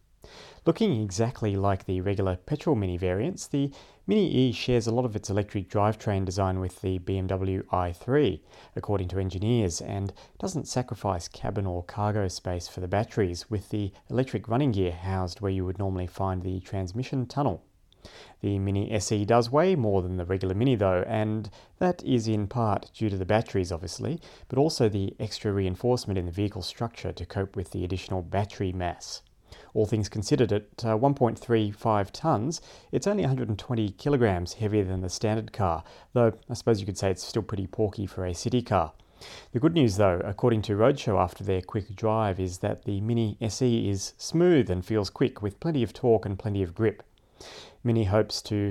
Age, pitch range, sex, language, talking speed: 30-49, 95-115 Hz, male, English, 180 wpm